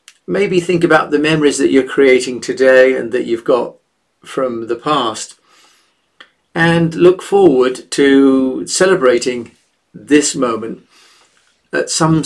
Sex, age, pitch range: male, 40-59, 130-180 Hz